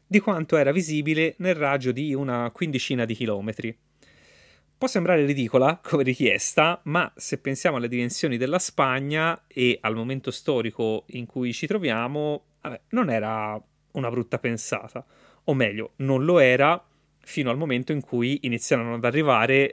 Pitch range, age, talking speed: 120-150 Hz, 30-49, 150 wpm